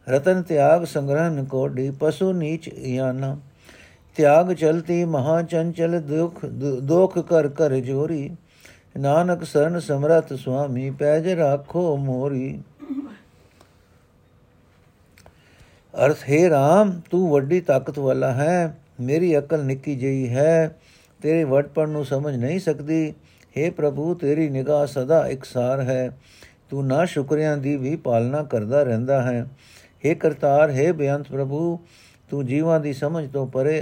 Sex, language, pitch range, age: male, Punjabi, 130-160 Hz, 60-79